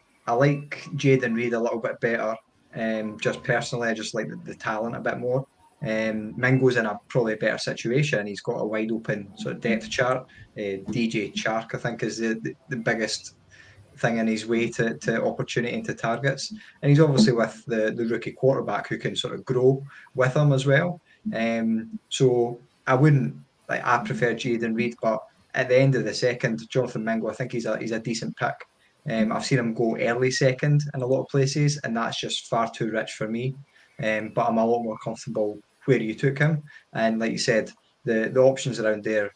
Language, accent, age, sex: English, British, 20-39, male